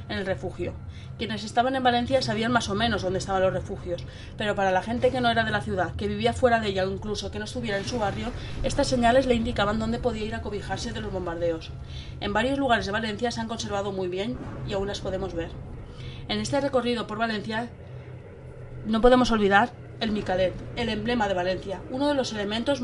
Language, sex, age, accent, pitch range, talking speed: Spanish, female, 30-49, Spanish, 180-235 Hz, 220 wpm